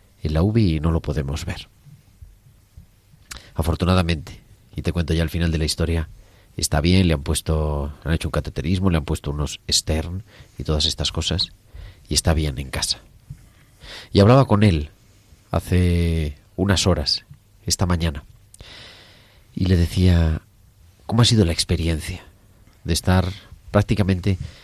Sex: male